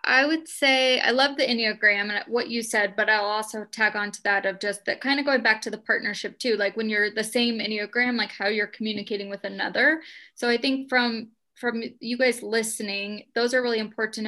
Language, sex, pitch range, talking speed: English, female, 210-240 Hz, 225 wpm